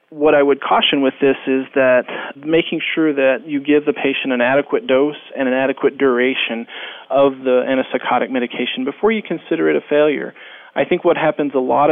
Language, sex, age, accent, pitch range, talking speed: English, male, 40-59, American, 130-150 Hz, 190 wpm